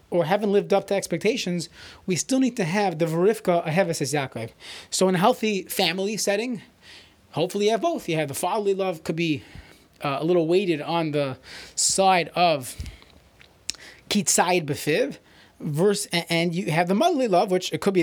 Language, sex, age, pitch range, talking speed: English, male, 30-49, 160-205 Hz, 175 wpm